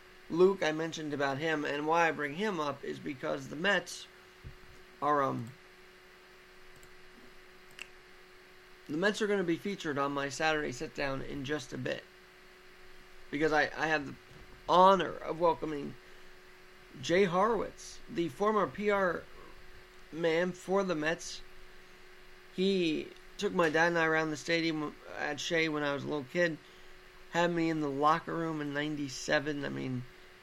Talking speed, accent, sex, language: 150 wpm, American, male, English